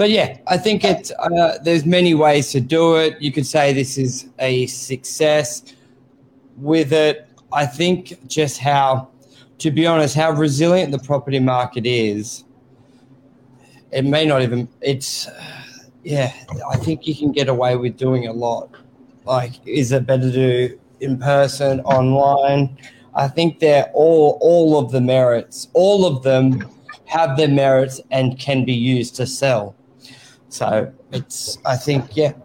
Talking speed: 155 wpm